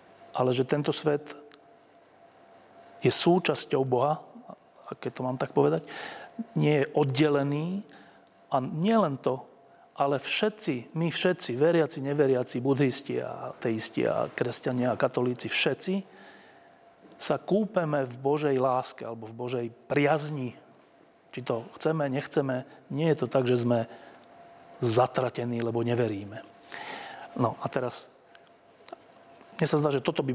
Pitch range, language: 125-155 Hz, Slovak